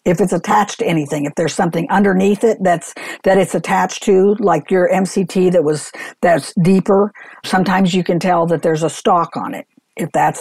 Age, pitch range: 60-79, 155-190 Hz